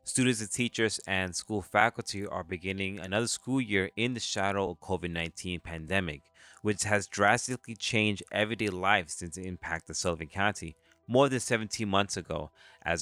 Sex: male